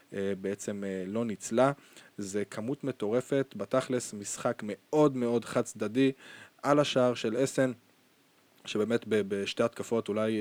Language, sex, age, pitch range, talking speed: Hebrew, male, 20-39, 105-125 Hz, 115 wpm